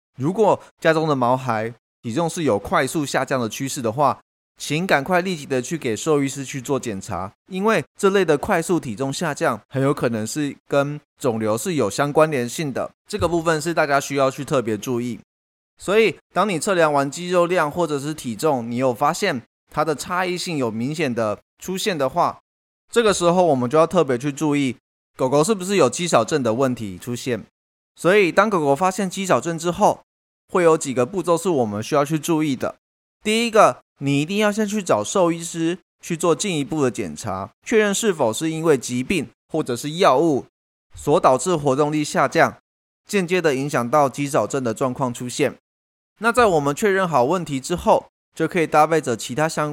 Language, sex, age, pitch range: Chinese, male, 20-39, 130-175 Hz